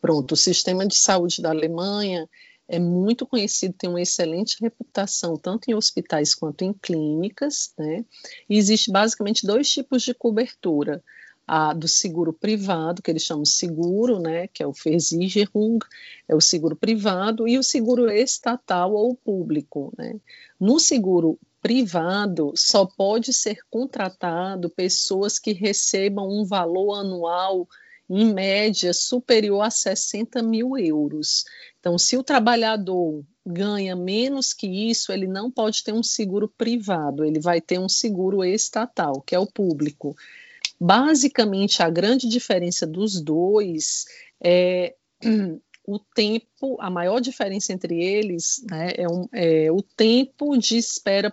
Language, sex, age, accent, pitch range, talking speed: Portuguese, female, 50-69, Brazilian, 175-230 Hz, 140 wpm